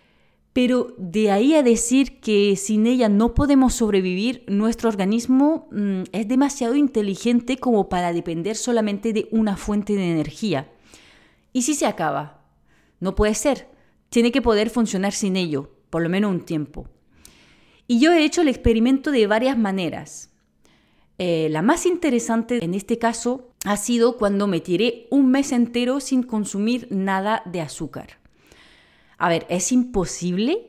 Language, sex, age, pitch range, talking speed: Spanish, female, 30-49, 185-250 Hz, 150 wpm